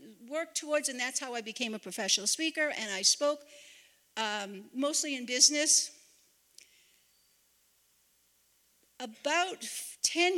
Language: English